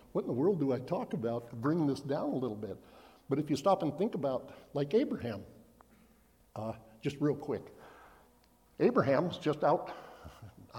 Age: 60-79